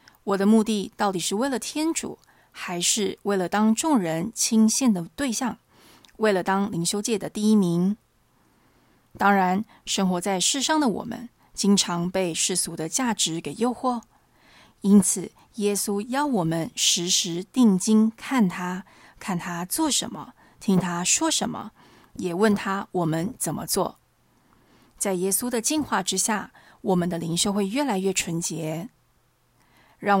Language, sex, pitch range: Chinese, female, 175-225 Hz